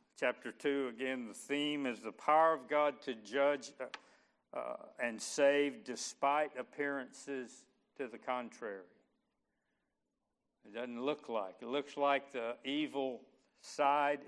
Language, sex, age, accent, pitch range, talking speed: English, male, 60-79, American, 125-145 Hz, 130 wpm